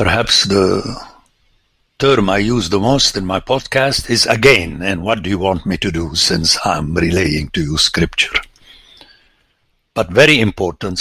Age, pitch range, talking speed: 60-79, 100-155 Hz, 160 wpm